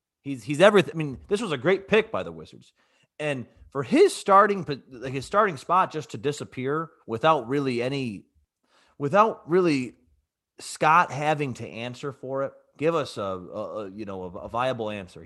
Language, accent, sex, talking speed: English, American, male, 175 wpm